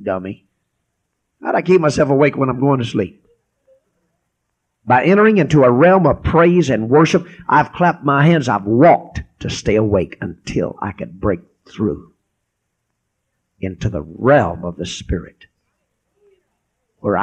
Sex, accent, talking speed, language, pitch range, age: male, American, 145 wpm, English, 85-125 Hz, 50-69